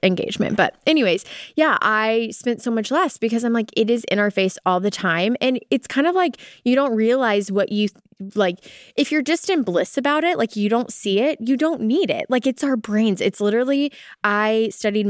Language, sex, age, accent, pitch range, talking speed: English, female, 20-39, American, 185-250 Hz, 220 wpm